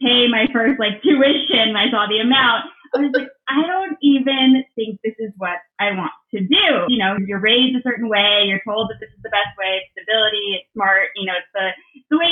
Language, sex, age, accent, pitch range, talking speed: English, female, 20-39, American, 200-250 Hz, 240 wpm